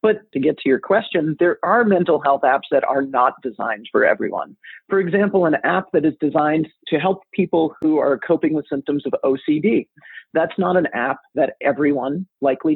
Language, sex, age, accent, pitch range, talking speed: English, male, 40-59, American, 140-190 Hz, 195 wpm